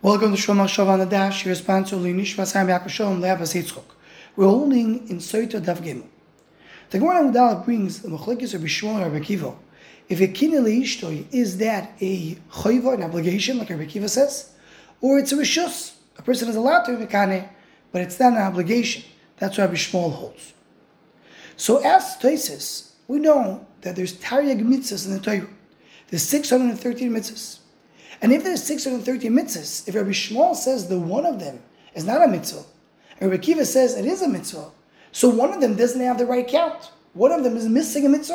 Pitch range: 195-275 Hz